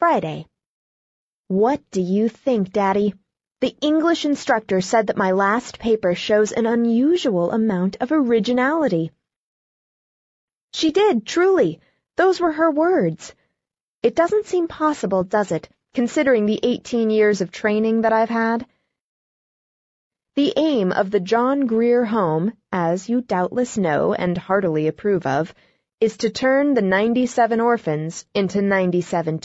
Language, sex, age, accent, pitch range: Chinese, female, 20-39, American, 185-250 Hz